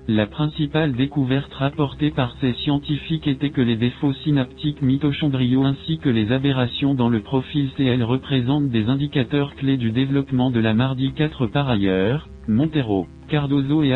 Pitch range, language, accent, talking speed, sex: 125-145 Hz, English, French, 155 wpm, male